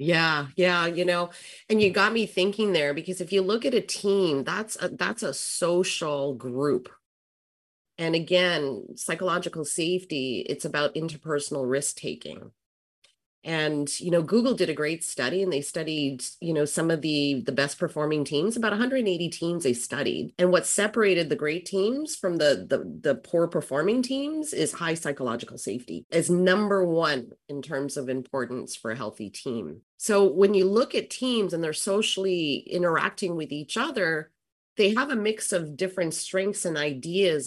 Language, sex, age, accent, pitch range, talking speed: English, female, 30-49, American, 145-195 Hz, 170 wpm